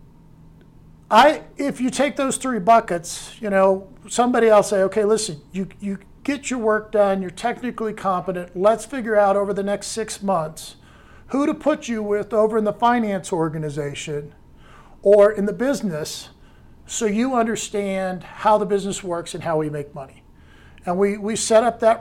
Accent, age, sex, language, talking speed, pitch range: American, 50-69, male, English, 170 wpm, 190-225 Hz